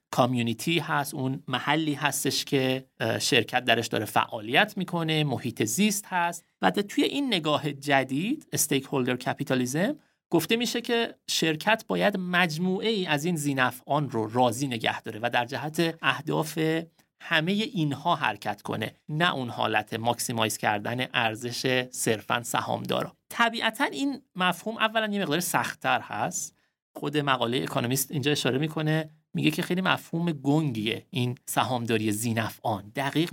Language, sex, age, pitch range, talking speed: Persian, male, 30-49, 125-170 Hz, 135 wpm